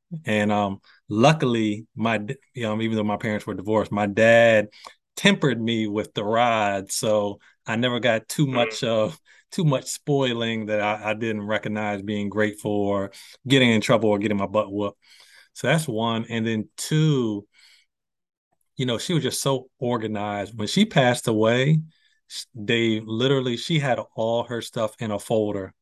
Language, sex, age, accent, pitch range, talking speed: English, male, 30-49, American, 105-125 Hz, 170 wpm